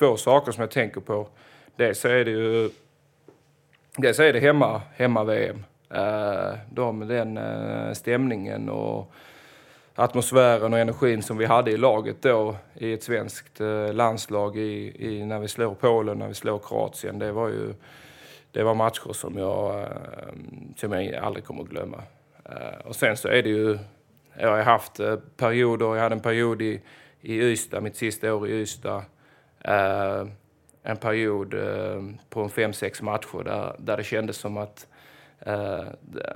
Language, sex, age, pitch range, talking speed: English, male, 30-49, 105-120 Hz, 155 wpm